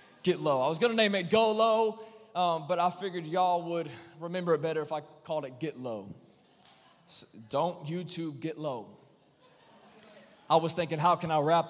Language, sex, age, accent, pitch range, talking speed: English, male, 20-39, American, 150-215 Hz, 185 wpm